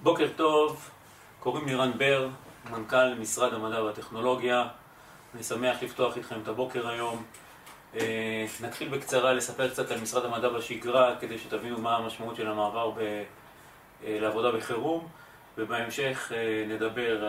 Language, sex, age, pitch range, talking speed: Hebrew, male, 30-49, 110-130 Hz, 120 wpm